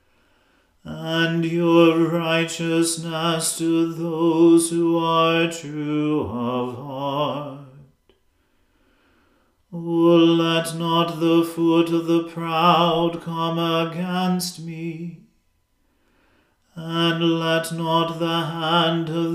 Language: English